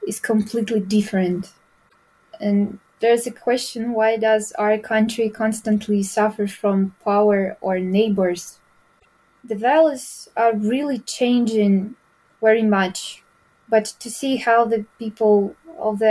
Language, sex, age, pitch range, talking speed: English, female, 20-39, 210-235 Hz, 120 wpm